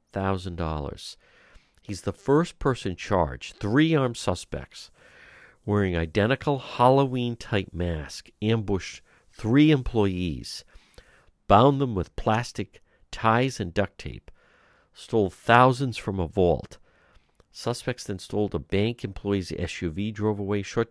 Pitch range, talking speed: 80-105 Hz, 120 wpm